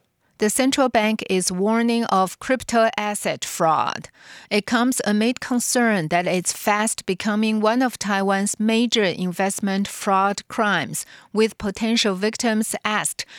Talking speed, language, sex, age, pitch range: 125 wpm, English, female, 40-59, 195-225 Hz